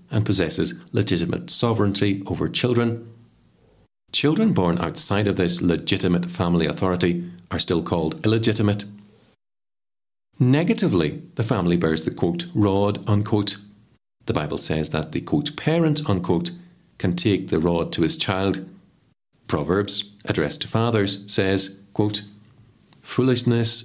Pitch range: 90-110 Hz